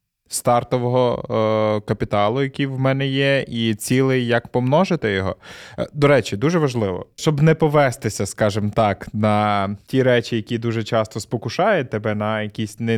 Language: Ukrainian